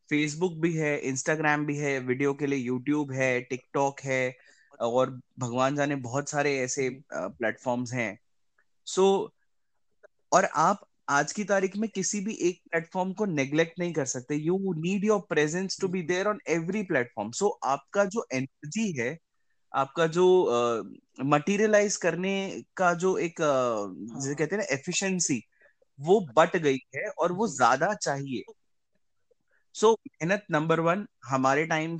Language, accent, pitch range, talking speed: Hindi, native, 135-190 Hz, 150 wpm